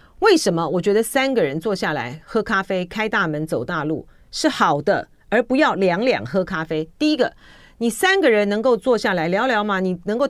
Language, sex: Chinese, female